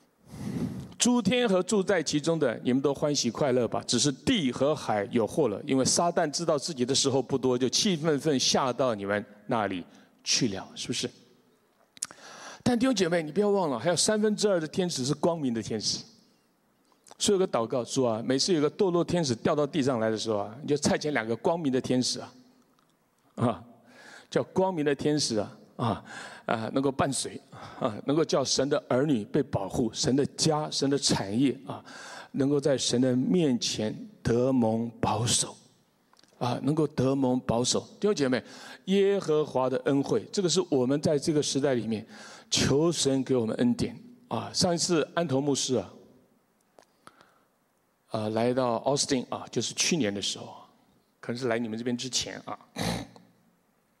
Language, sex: English, male